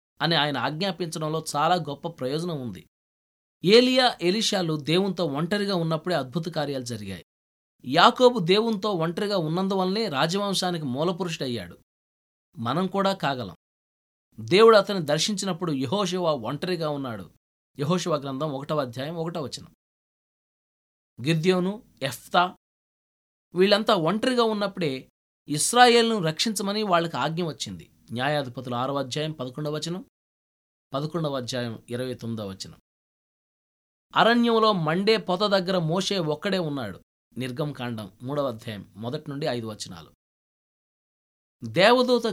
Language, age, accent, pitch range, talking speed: Telugu, 20-39, native, 125-190 Hz, 100 wpm